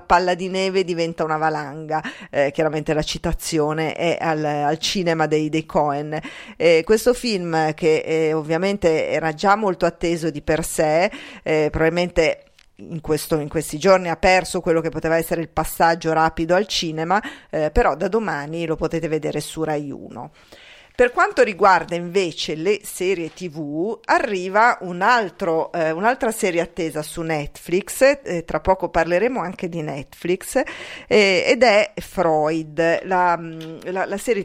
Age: 40-59